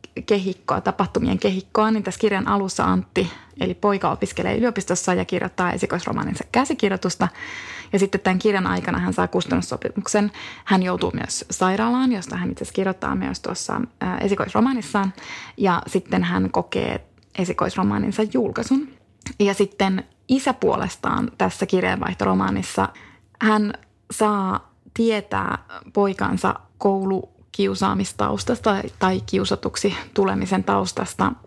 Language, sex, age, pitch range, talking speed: Finnish, female, 20-39, 185-220 Hz, 110 wpm